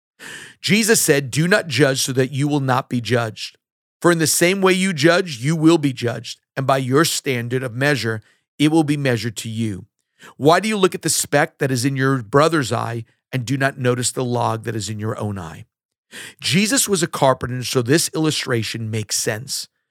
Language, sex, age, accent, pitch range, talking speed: English, male, 50-69, American, 120-155 Hz, 210 wpm